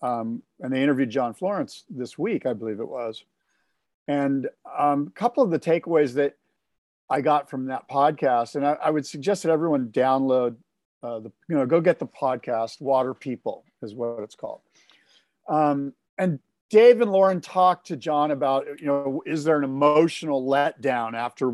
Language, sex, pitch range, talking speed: English, male, 130-175 Hz, 180 wpm